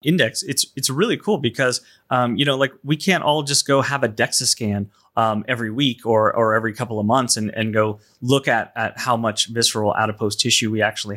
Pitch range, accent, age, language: 110-130 Hz, American, 30-49, English